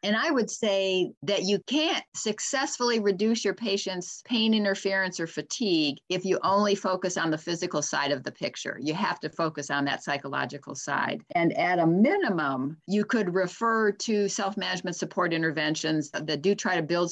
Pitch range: 165-215 Hz